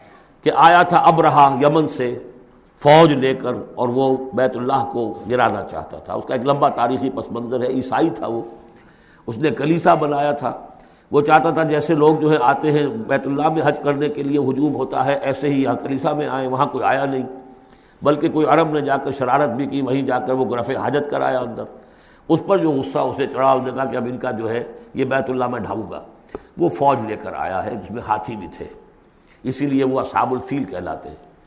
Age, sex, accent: 60-79, male, Indian